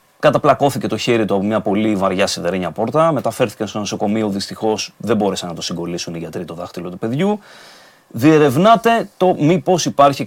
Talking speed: 170 wpm